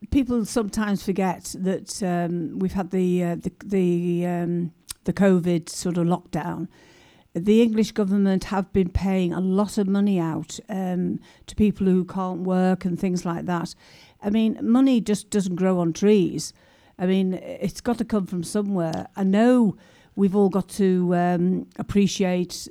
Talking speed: 165 wpm